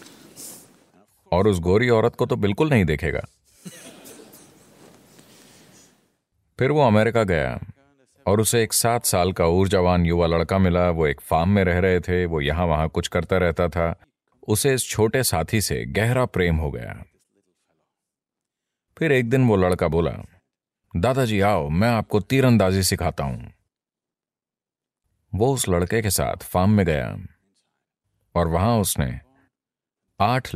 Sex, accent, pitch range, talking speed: male, Indian, 85-115 Hz, 120 wpm